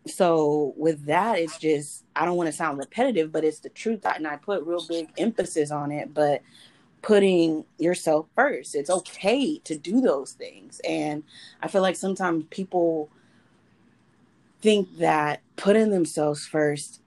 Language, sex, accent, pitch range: English, female, American, 150-175 Hz